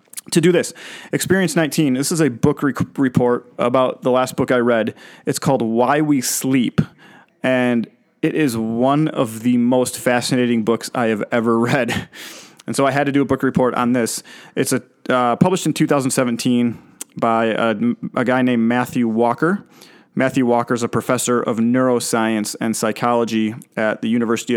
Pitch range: 120-140 Hz